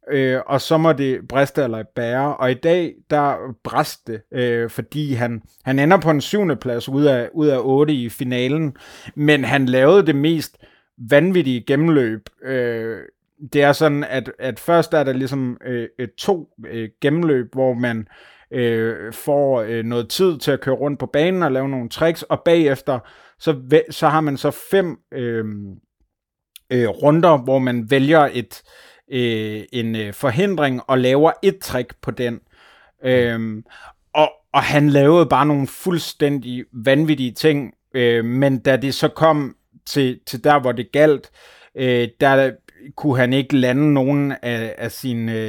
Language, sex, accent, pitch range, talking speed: Danish, male, native, 120-145 Hz, 155 wpm